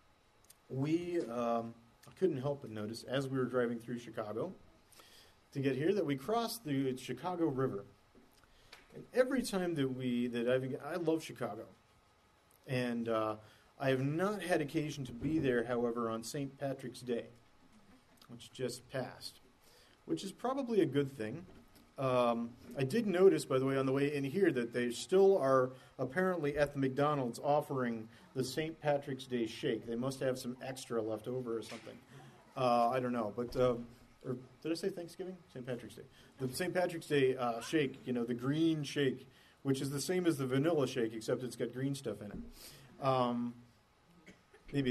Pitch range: 120-145 Hz